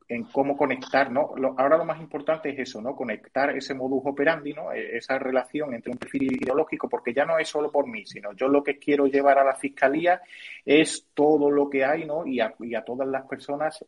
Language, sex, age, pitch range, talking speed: Spanish, male, 30-49, 115-140 Hz, 220 wpm